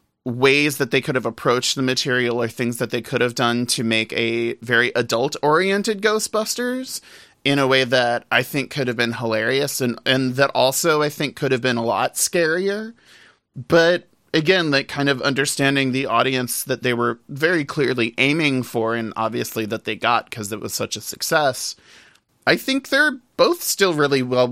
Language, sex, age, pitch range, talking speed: English, male, 30-49, 120-160 Hz, 185 wpm